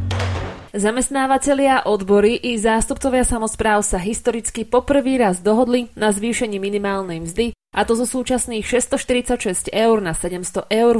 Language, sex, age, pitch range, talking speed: Slovak, female, 20-39, 195-240 Hz, 130 wpm